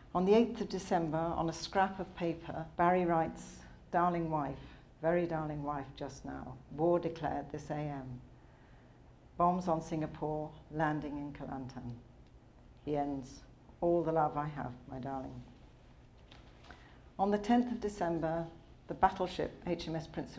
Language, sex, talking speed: English, female, 140 wpm